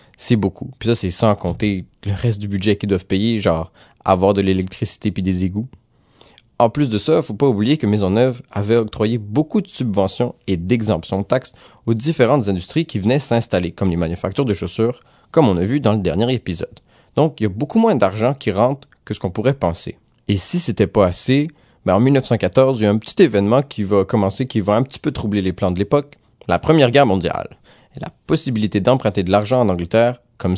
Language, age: French, 30-49